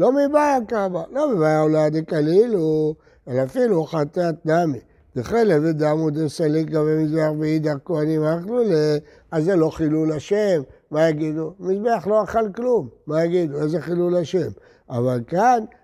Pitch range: 150-210 Hz